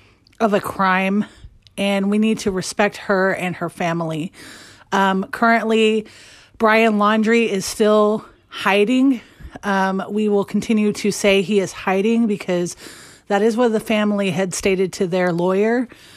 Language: English